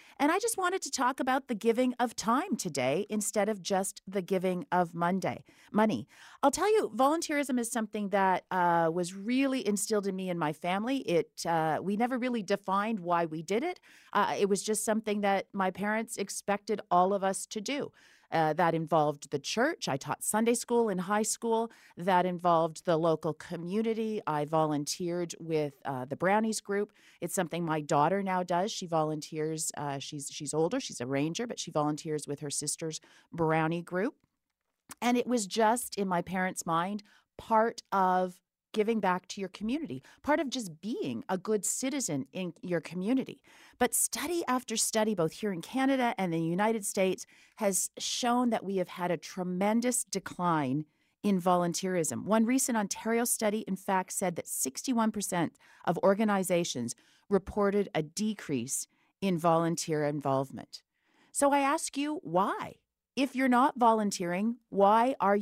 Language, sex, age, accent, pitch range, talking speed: English, female, 40-59, American, 170-230 Hz, 170 wpm